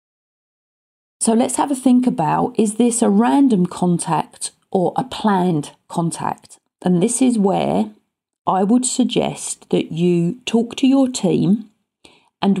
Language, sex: English, female